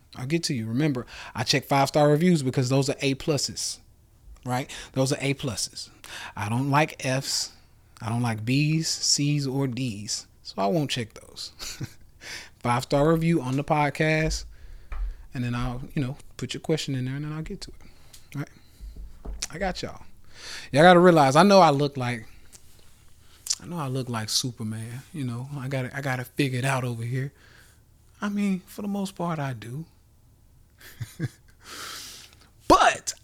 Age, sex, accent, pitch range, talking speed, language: 20-39, male, American, 110-150 Hz, 180 wpm, English